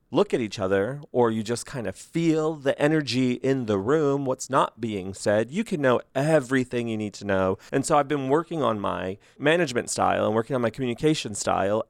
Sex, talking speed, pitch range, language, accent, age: male, 210 wpm, 110-145 Hz, English, American, 30-49